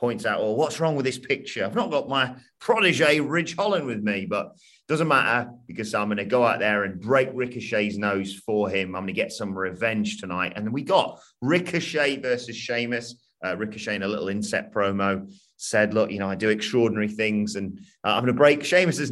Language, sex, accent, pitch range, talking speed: English, male, British, 105-145 Hz, 220 wpm